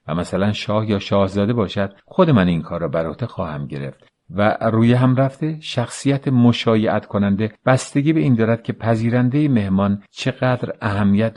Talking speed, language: 155 wpm, Persian